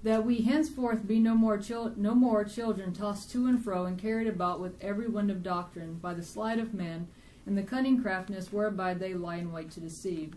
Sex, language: female, English